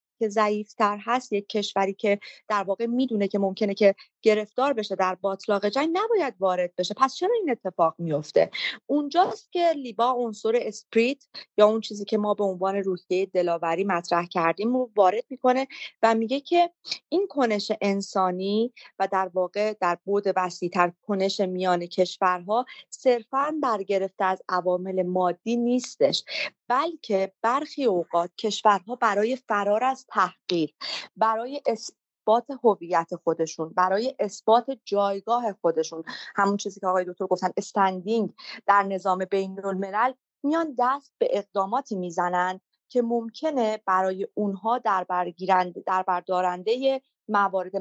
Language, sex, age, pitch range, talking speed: Persian, female, 30-49, 185-240 Hz, 135 wpm